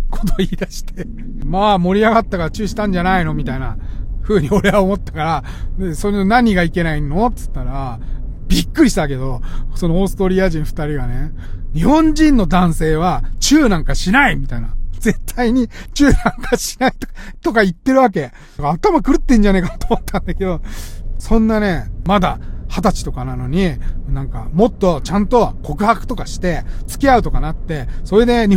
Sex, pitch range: male, 140-220 Hz